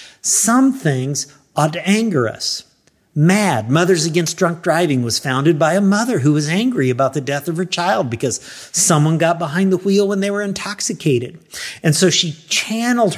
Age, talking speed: 50-69, 180 wpm